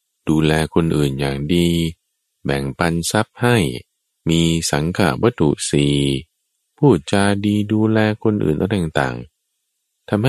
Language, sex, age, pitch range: Thai, male, 20-39, 70-110 Hz